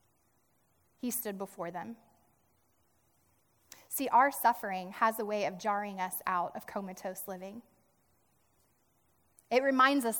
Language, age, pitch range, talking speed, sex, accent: English, 10-29, 225-300 Hz, 120 wpm, female, American